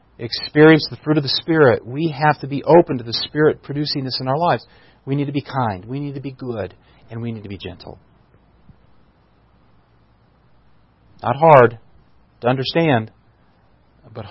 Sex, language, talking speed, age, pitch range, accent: male, English, 170 wpm, 40-59, 110-135 Hz, American